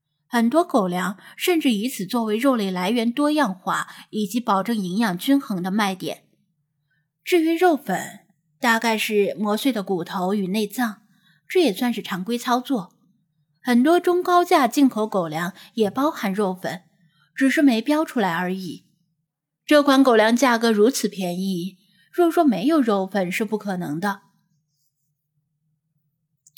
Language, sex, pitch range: Chinese, female, 185-255 Hz